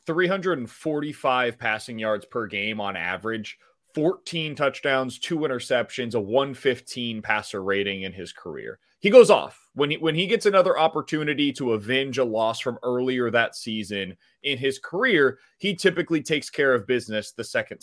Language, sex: English, male